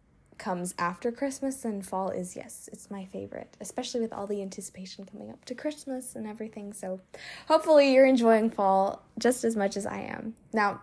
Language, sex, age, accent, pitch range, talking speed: English, female, 10-29, American, 195-235 Hz, 185 wpm